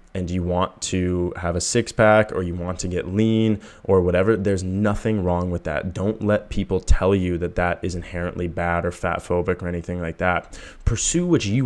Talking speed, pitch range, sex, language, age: 210 wpm, 90-105 Hz, male, English, 20-39